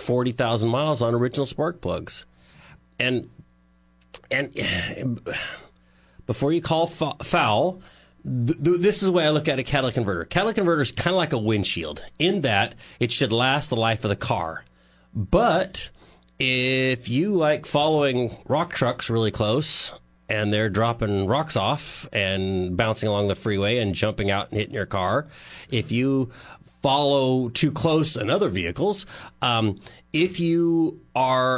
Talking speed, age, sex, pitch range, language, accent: 155 wpm, 40-59, male, 100-135 Hz, English, American